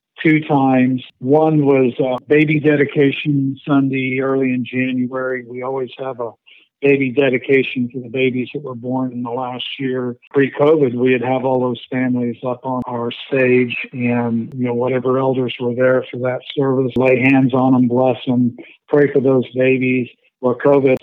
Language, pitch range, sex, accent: English, 125-135 Hz, male, American